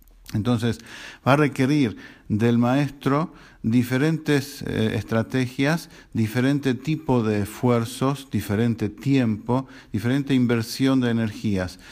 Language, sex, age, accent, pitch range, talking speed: English, male, 50-69, Argentinian, 105-135 Hz, 95 wpm